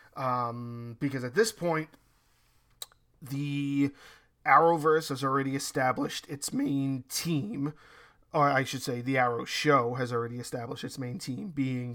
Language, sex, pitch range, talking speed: English, male, 130-160 Hz, 135 wpm